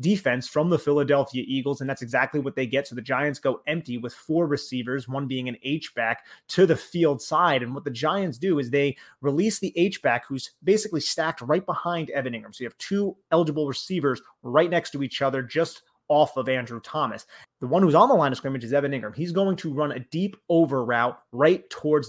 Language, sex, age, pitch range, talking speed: English, male, 30-49, 135-175 Hz, 220 wpm